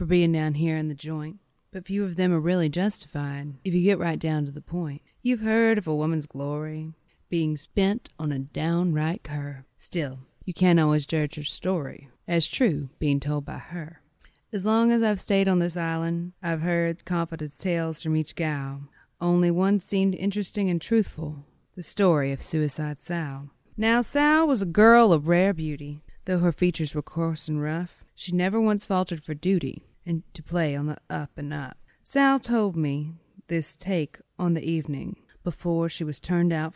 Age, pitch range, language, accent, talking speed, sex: 30-49, 150-190 Hz, English, American, 190 wpm, female